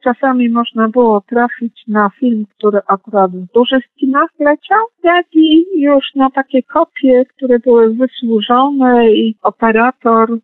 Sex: female